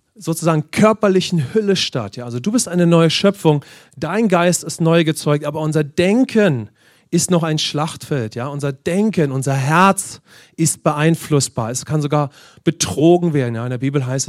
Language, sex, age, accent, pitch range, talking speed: English, male, 40-59, German, 140-175 Hz, 170 wpm